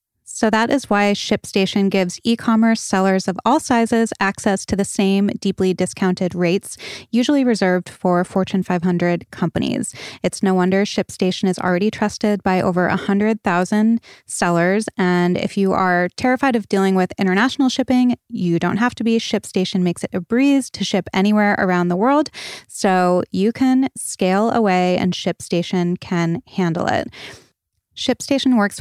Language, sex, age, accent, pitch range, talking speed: English, female, 20-39, American, 180-220 Hz, 150 wpm